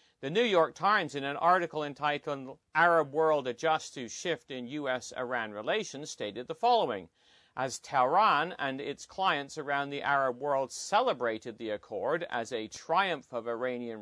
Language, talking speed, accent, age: English, 155 wpm, American, 40-59